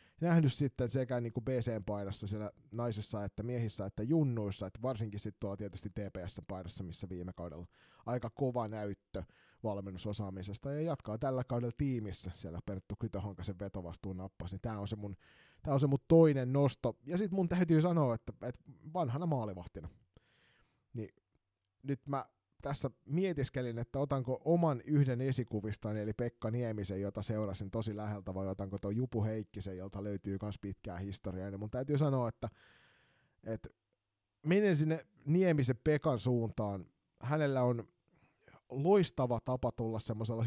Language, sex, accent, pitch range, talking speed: Finnish, male, native, 100-130 Hz, 140 wpm